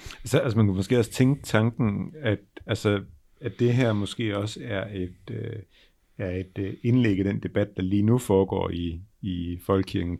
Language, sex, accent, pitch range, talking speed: Danish, male, native, 95-120 Hz, 190 wpm